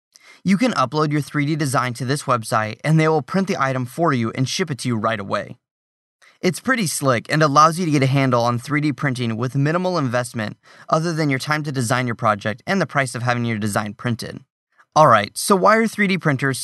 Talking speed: 225 wpm